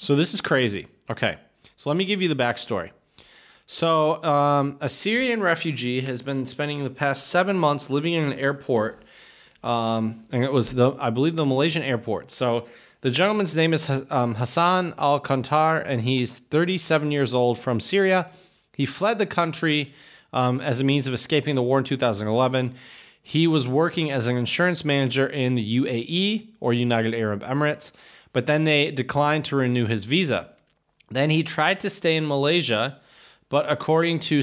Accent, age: American, 20-39